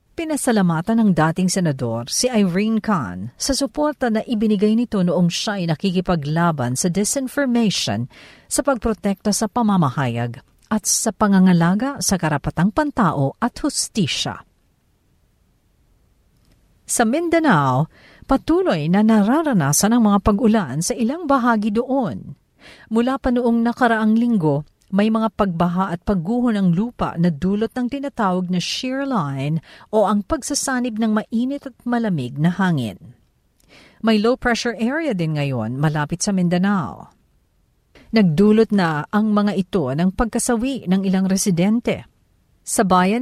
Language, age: Filipino, 50-69